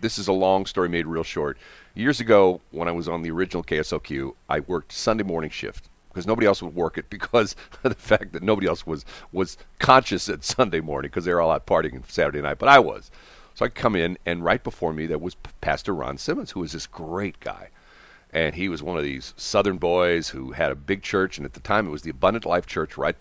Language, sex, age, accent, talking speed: English, male, 40-59, American, 245 wpm